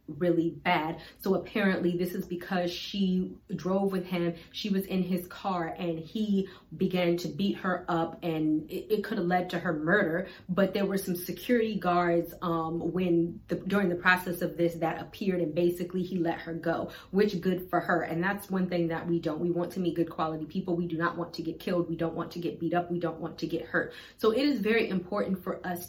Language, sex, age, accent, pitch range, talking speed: English, female, 30-49, American, 170-195 Hz, 230 wpm